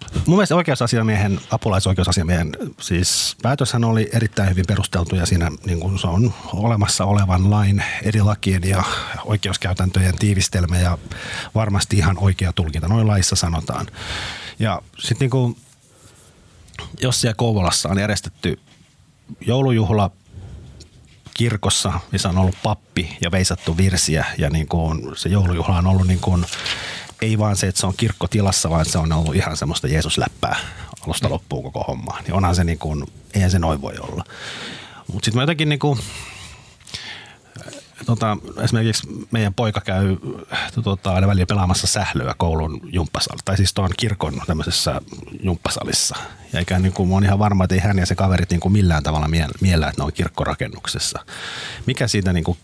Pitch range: 90-110 Hz